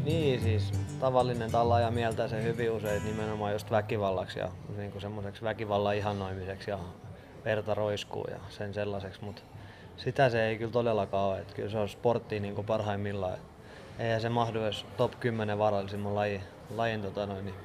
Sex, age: male, 20-39